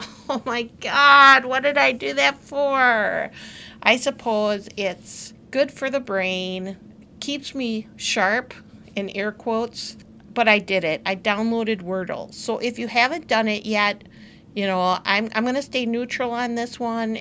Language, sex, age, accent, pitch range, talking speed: English, female, 50-69, American, 200-250 Hz, 165 wpm